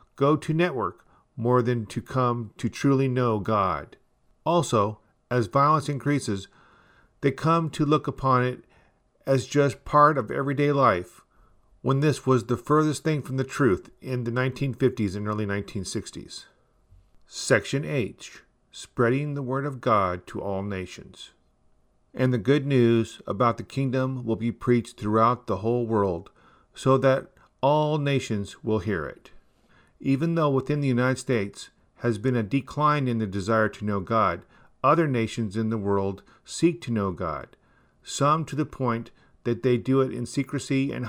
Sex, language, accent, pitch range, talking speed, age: male, English, American, 110-135 Hz, 160 wpm, 40-59